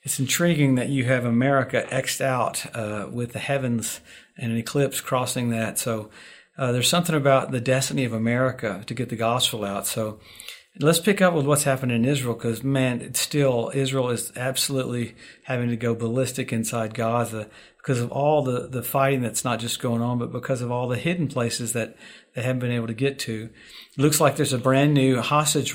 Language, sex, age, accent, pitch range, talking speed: English, male, 50-69, American, 120-135 Hz, 205 wpm